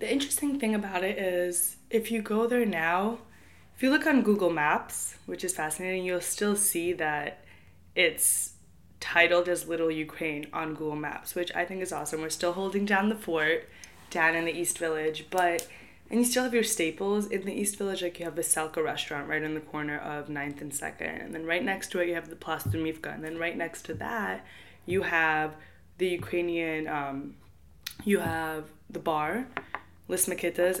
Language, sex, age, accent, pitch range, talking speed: English, female, 20-39, American, 155-195 Hz, 195 wpm